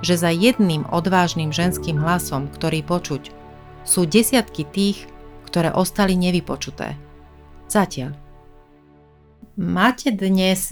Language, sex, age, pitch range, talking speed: Slovak, female, 30-49, 150-175 Hz, 95 wpm